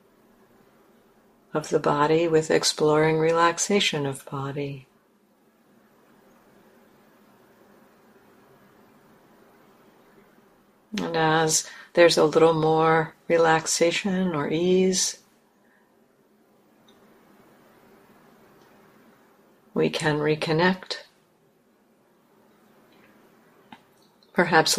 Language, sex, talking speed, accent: English, female, 50 wpm, American